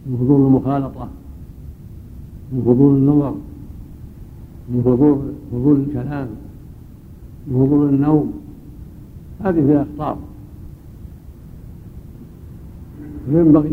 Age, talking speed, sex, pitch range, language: 70-89, 75 wpm, male, 125-150 Hz, Arabic